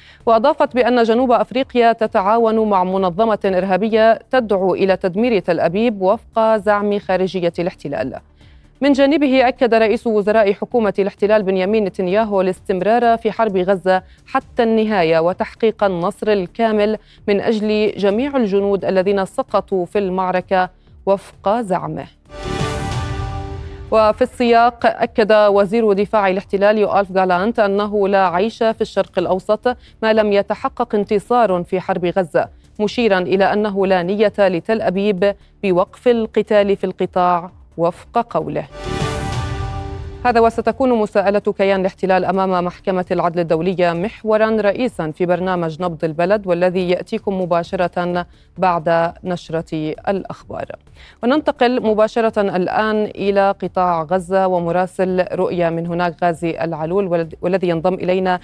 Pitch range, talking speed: 180-220 Hz, 120 wpm